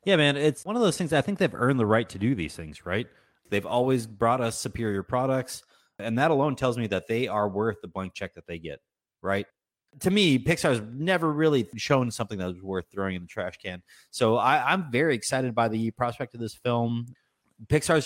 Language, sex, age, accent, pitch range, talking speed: English, male, 30-49, American, 95-125 Hz, 230 wpm